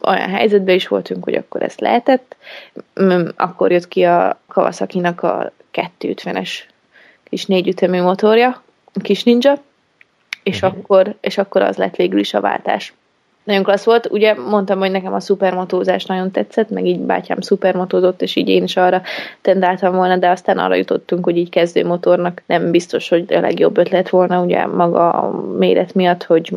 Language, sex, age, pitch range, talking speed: Hungarian, female, 20-39, 175-205 Hz, 170 wpm